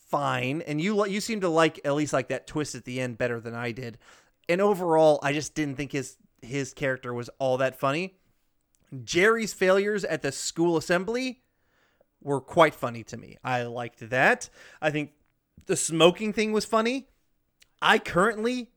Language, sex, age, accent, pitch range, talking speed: English, male, 30-49, American, 140-200 Hz, 175 wpm